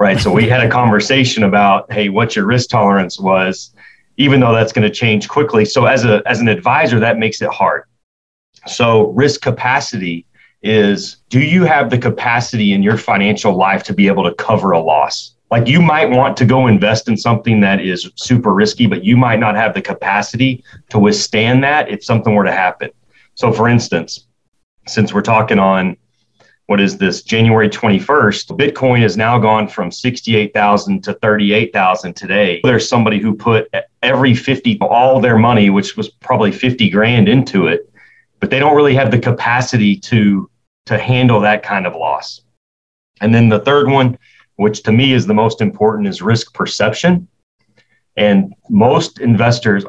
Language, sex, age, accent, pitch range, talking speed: English, male, 30-49, American, 105-125 Hz, 175 wpm